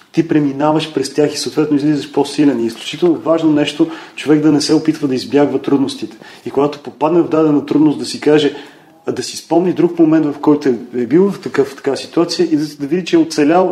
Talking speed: 220 wpm